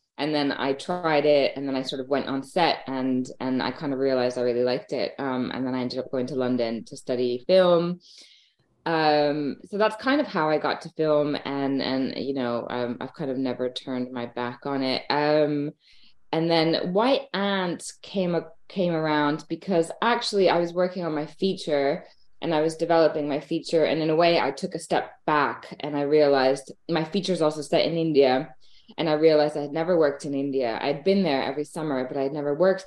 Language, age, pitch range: English, 20-39, 140-175 Hz